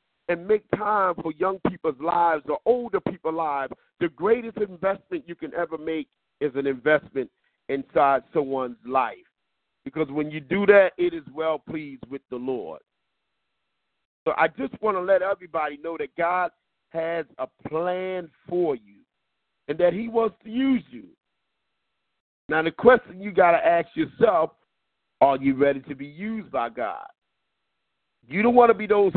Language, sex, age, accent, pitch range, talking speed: English, male, 50-69, American, 155-200 Hz, 165 wpm